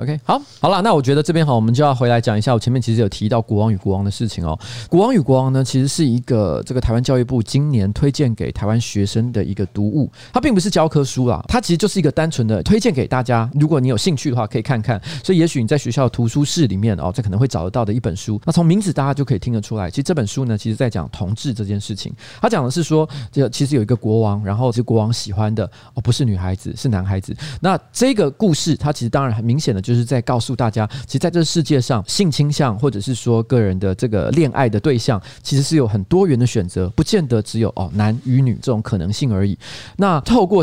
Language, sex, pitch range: Chinese, male, 110-150 Hz